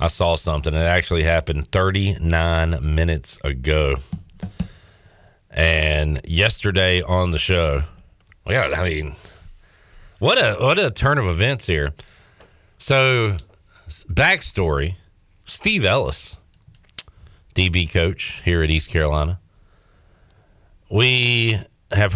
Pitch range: 80-105 Hz